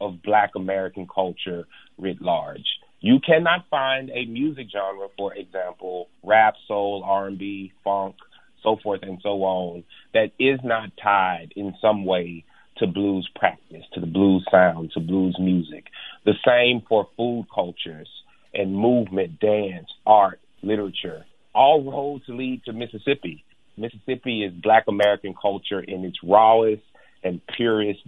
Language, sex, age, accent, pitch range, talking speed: English, male, 30-49, American, 95-120 Hz, 140 wpm